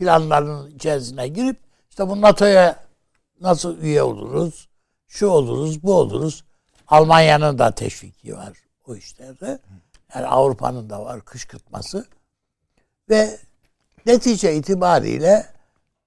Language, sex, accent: Turkish, male, native